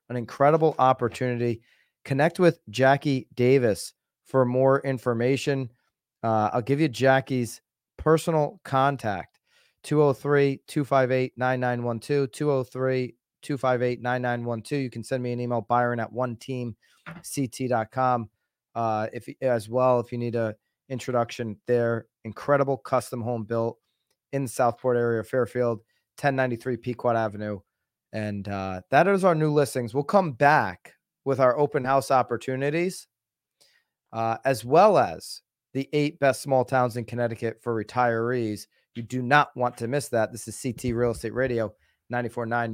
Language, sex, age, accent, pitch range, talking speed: English, male, 30-49, American, 115-135 Hz, 130 wpm